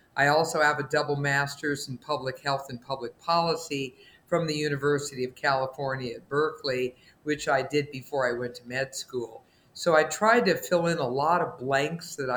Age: 50-69